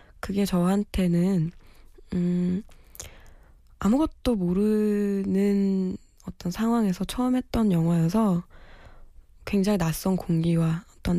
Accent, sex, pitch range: native, female, 165-205 Hz